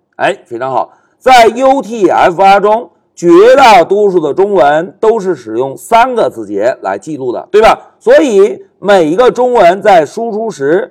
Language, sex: Chinese, male